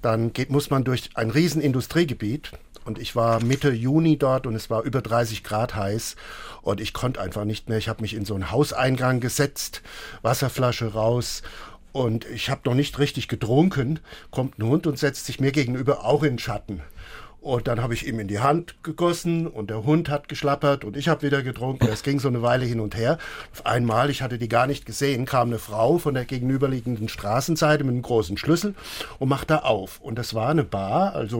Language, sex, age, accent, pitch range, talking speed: German, male, 50-69, German, 115-145 Hz, 210 wpm